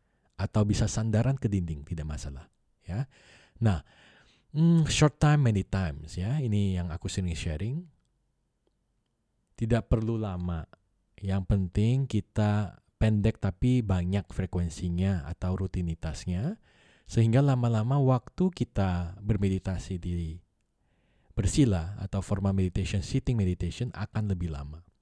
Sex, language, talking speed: male, Indonesian, 110 wpm